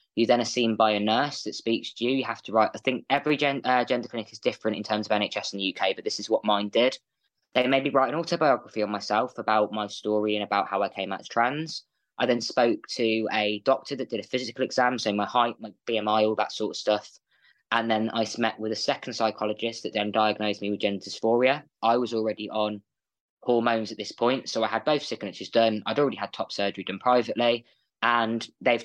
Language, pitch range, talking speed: English, 105-120 Hz, 235 wpm